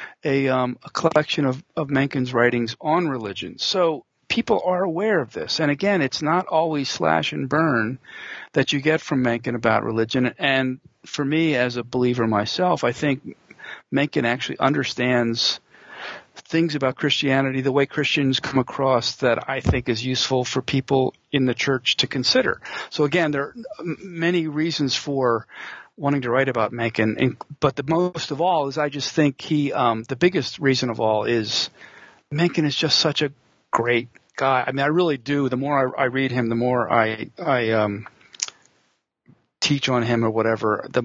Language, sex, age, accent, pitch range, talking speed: English, male, 50-69, American, 120-145 Hz, 175 wpm